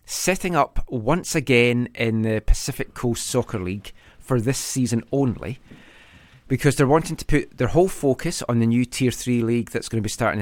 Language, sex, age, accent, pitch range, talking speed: English, male, 30-49, British, 105-130 Hz, 190 wpm